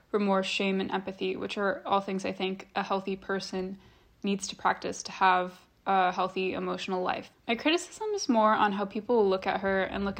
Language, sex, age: English, female, 20-39